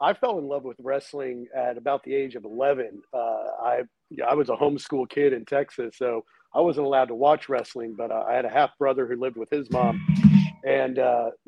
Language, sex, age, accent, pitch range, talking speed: English, male, 50-69, American, 130-165 Hz, 215 wpm